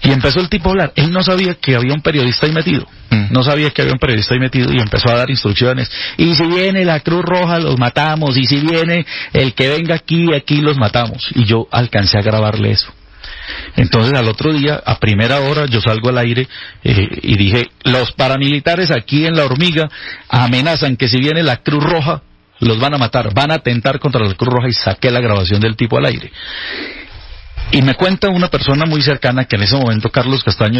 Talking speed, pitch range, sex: 215 wpm, 115-155 Hz, male